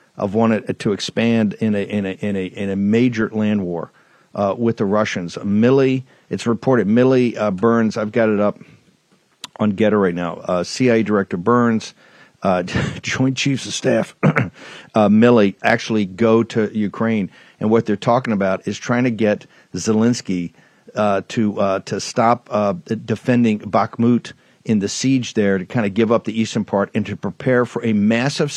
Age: 50-69